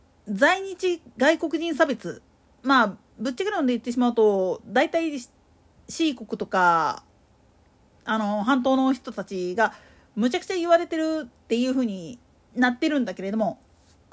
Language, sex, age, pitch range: Japanese, female, 40-59, 240-360 Hz